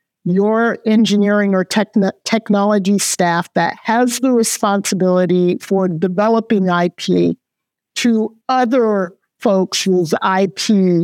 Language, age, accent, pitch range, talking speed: English, 50-69, American, 180-220 Hz, 90 wpm